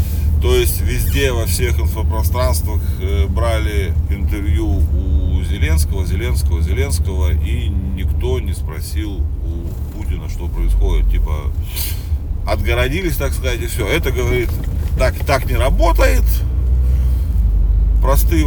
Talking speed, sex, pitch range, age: 105 wpm, male, 75-85 Hz, 30-49